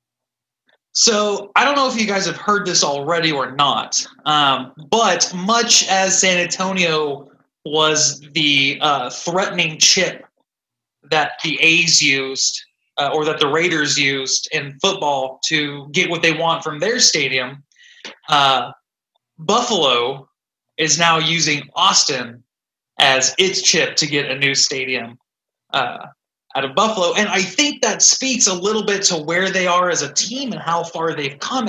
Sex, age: male, 20-39